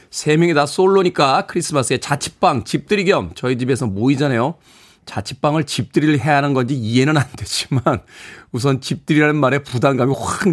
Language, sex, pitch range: Korean, male, 120-165 Hz